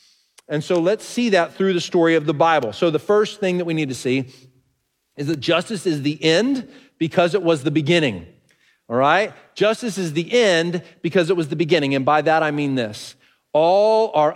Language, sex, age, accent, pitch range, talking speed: English, male, 40-59, American, 140-190 Hz, 210 wpm